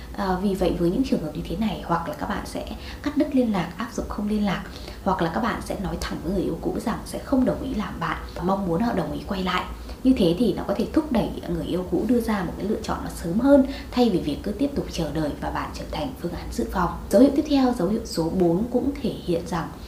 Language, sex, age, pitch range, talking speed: Vietnamese, female, 20-39, 175-250 Hz, 295 wpm